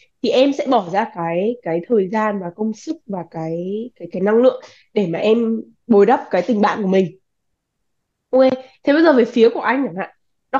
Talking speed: 220 wpm